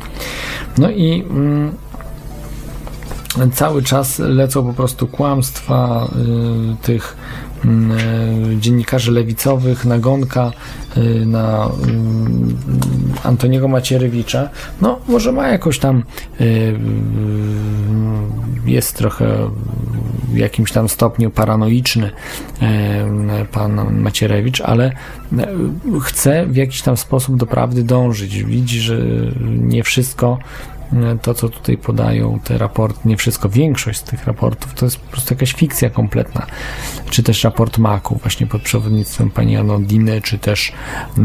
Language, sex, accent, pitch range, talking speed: Polish, male, native, 110-135 Hz, 105 wpm